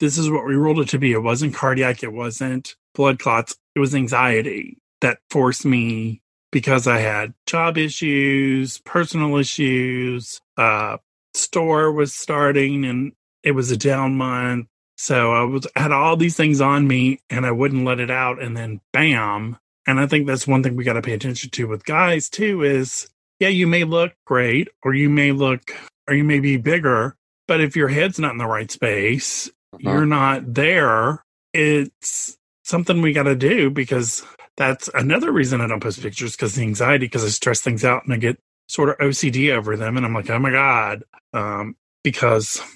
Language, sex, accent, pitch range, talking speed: English, male, American, 120-145 Hz, 190 wpm